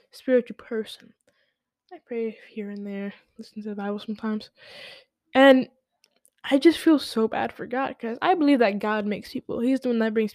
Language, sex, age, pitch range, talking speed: English, female, 10-29, 225-275 Hz, 185 wpm